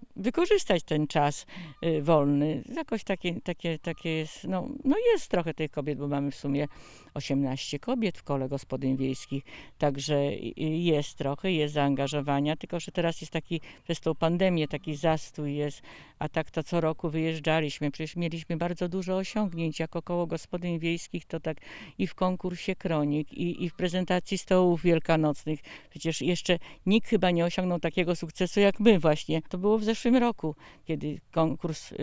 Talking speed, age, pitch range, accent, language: 165 wpm, 50-69, 150-190 Hz, native, Polish